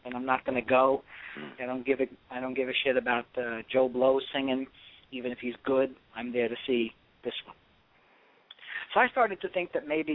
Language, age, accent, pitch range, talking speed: English, 40-59, American, 115-140 Hz, 220 wpm